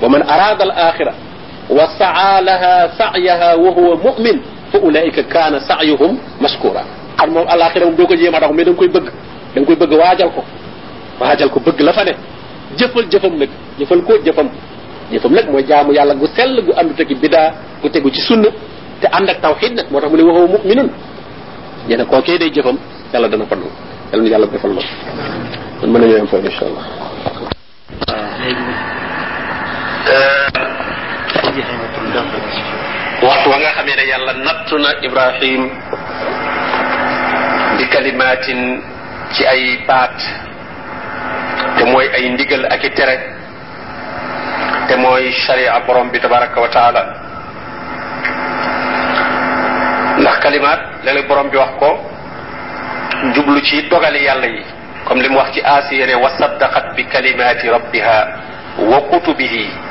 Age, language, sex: 40-59, French, male